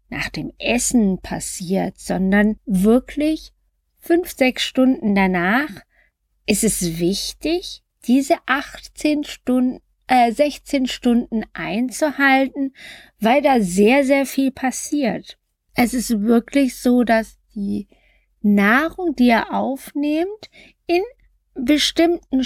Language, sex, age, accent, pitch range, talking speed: German, female, 50-69, German, 210-295 Hz, 100 wpm